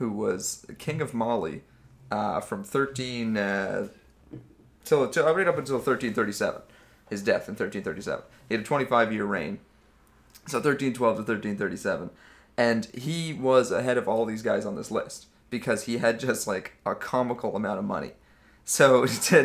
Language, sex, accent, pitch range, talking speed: English, male, American, 105-135 Hz, 185 wpm